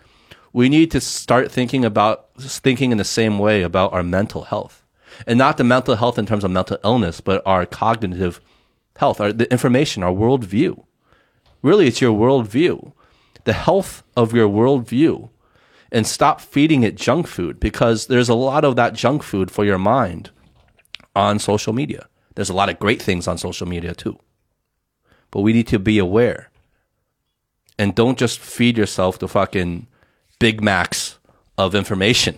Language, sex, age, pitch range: Chinese, male, 30-49, 95-125 Hz